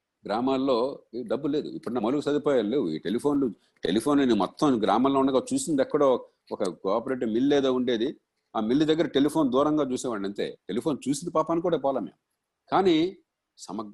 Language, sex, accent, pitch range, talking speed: Telugu, male, native, 110-150 Hz, 160 wpm